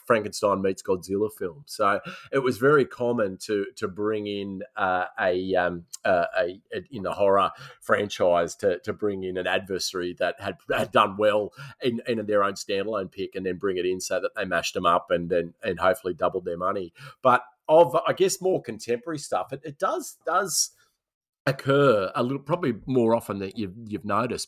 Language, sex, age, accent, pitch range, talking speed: English, male, 30-49, Australian, 100-130 Hz, 195 wpm